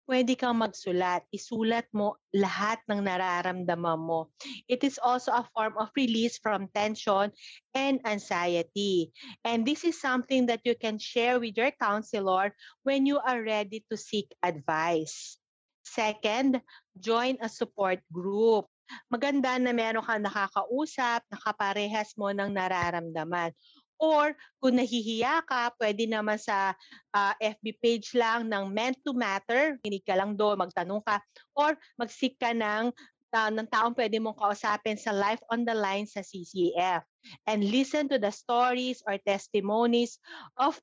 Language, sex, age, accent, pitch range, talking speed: Filipino, female, 40-59, native, 200-250 Hz, 145 wpm